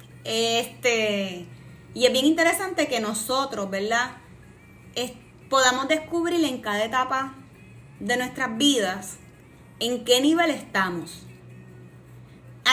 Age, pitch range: 20-39, 195-255 Hz